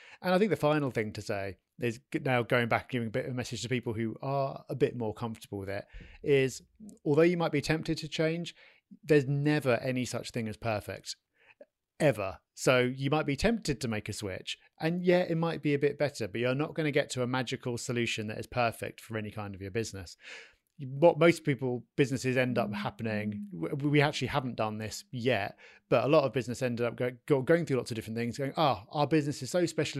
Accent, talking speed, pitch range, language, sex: British, 230 wpm, 115-150 Hz, English, male